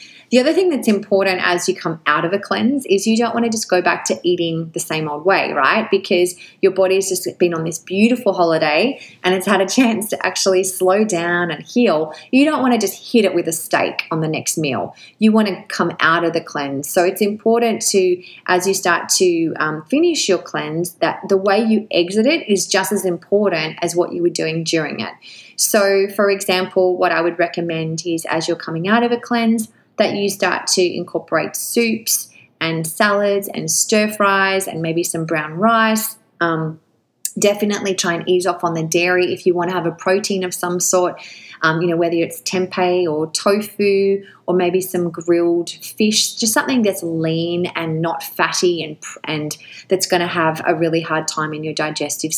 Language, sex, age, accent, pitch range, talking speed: English, female, 20-39, Australian, 165-200 Hz, 210 wpm